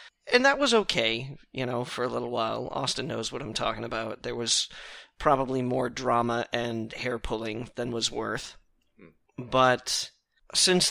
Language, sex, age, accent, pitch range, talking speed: English, male, 30-49, American, 115-145 Hz, 155 wpm